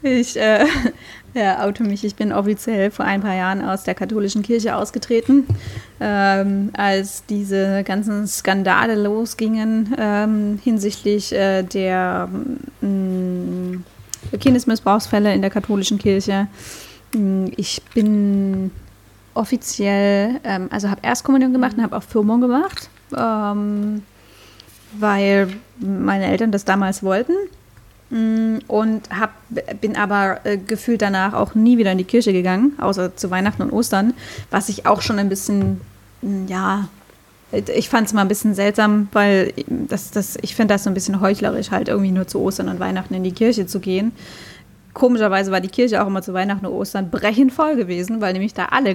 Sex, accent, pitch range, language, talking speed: female, German, 195-225 Hz, German, 155 wpm